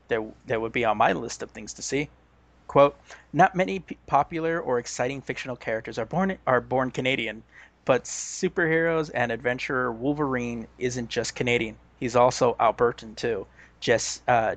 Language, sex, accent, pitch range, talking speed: English, male, American, 120-140 Hz, 150 wpm